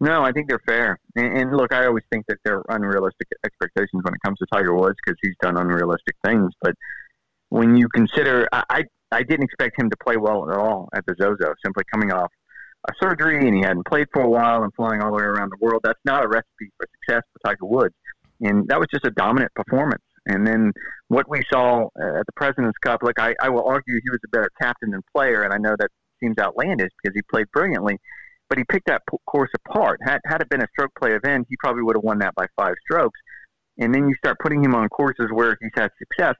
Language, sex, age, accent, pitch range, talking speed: English, male, 40-59, American, 110-135 Hz, 245 wpm